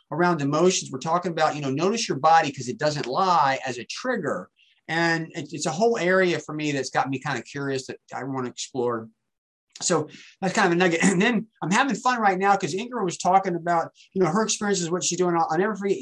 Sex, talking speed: male, 235 wpm